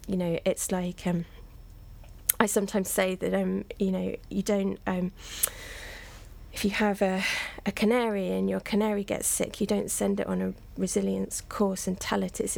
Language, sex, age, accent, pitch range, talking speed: English, female, 20-39, British, 175-205 Hz, 180 wpm